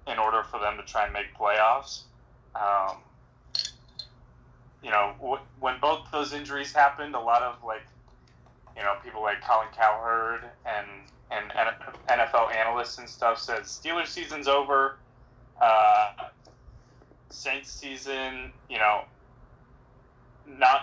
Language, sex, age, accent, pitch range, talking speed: English, male, 20-39, American, 105-130 Hz, 130 wpm